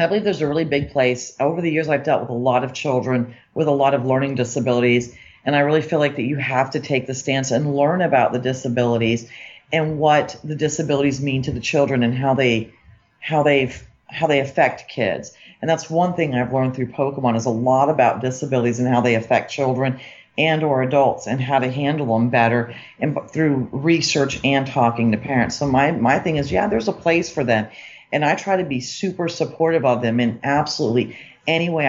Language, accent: English, American